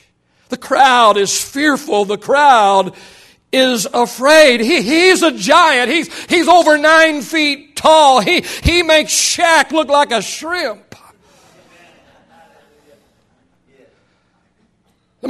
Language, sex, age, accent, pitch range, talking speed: English, male, 60-79, American, 195-300 Hz, 105 wpm